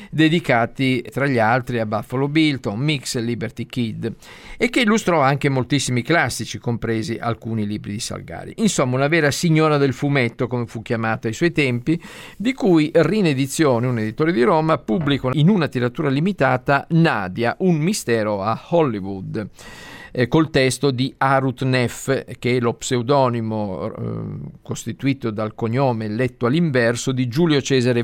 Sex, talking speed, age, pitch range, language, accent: male, 150 wpm, 50-69, 115-150 Hz, Italian, native